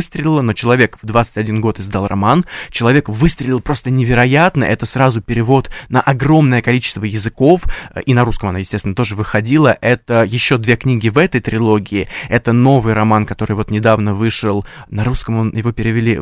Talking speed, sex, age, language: 160 wpm, male, 20-39, Russian